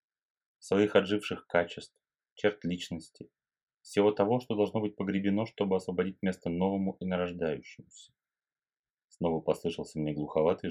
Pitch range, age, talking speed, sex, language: 80-105 Hz, 30-49, 120 wpm, male, Russian